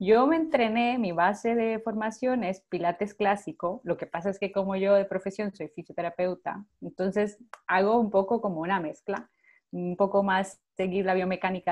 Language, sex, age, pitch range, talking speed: English, female, 30-49, 175-210 Hz, 175 wpm